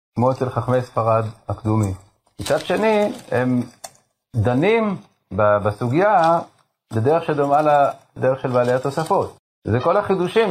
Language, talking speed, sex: Hebrew, 110 wpm, male